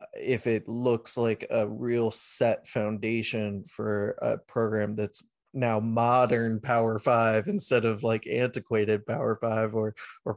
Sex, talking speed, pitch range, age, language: male, 140 wpm, 110-135 Hz, 20-39, English